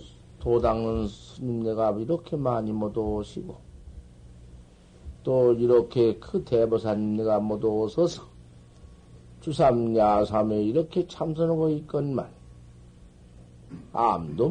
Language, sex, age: Korean, male, 50-69